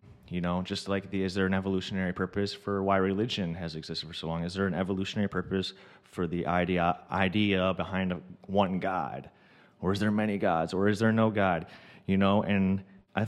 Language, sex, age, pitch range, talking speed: English, male, 30-49, 90-100 Hz, 205 wpm